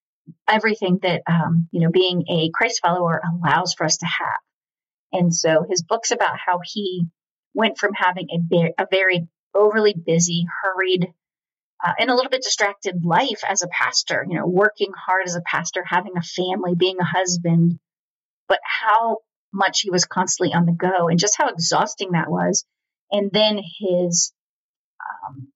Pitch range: 170-205 Hz